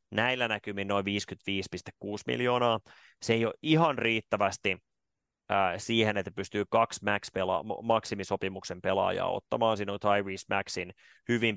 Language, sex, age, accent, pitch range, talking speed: Finnish, male, 20-39, native, 95-110 Hz, 125 wpm